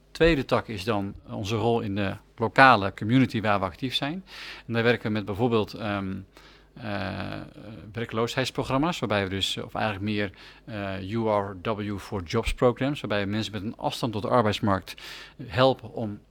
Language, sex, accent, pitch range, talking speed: Dutch, male, Dutch, 105-125 Hz, 165 wpm